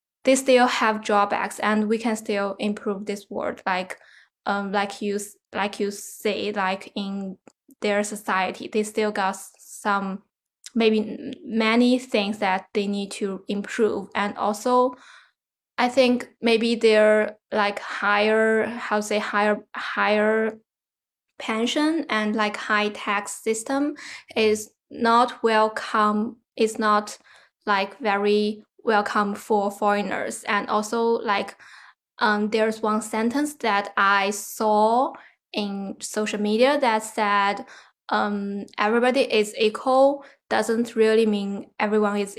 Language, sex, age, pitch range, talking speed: English, female, 10-29, 200-225 Hz, 125 wpm